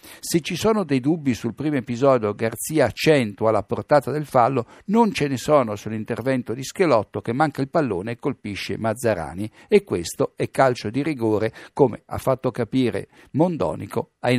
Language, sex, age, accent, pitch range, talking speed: Italian, male, 60-79, native, 110-150 Hz, 165 wpm